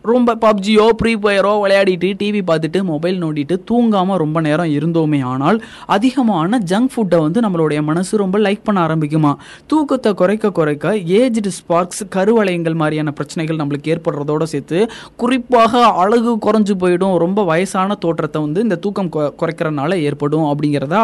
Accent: native